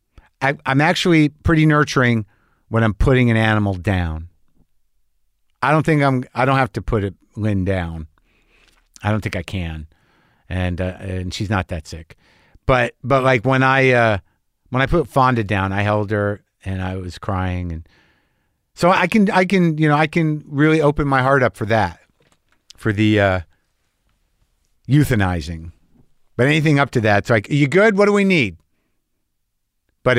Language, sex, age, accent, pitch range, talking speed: English, male, 50-69, American, 90-120 Hz, 175 wpm